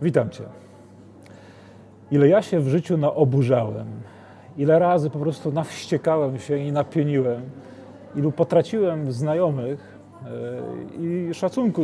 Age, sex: 30-49, male